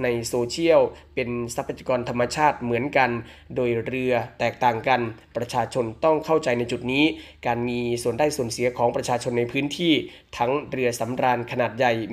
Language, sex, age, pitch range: Thai, male, 20-39, 120-150 Hz